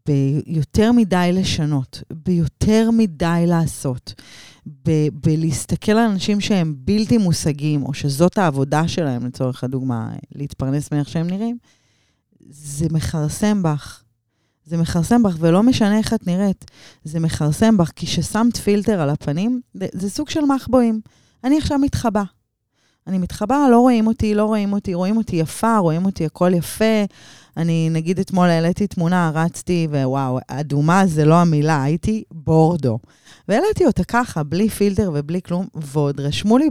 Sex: female